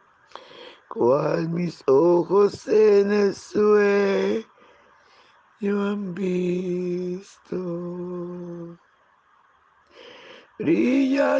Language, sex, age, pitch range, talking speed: Spanish, male, 60-79, 180-245 Hz, 55 wpm